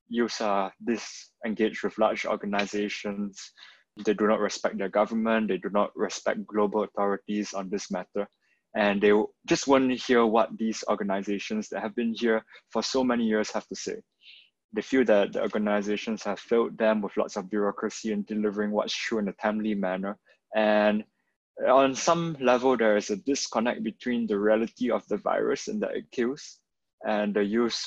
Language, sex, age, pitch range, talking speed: English, male, 20-39, 100-115 Hz, 175 wpm